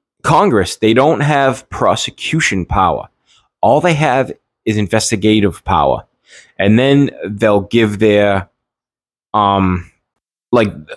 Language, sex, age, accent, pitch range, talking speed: English, male, 20-39, American, 100-120 Hz, 105 wpm